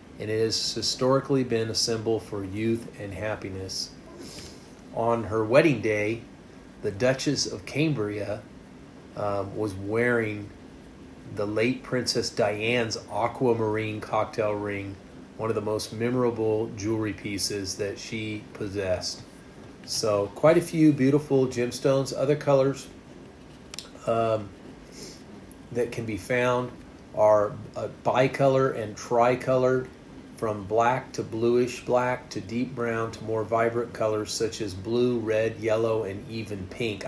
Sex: male